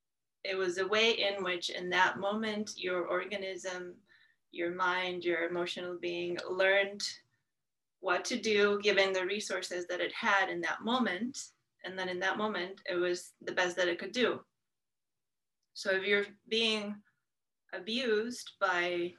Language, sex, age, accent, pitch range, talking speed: English, female, 20-39, American, 175-205 Hz, 150 wpm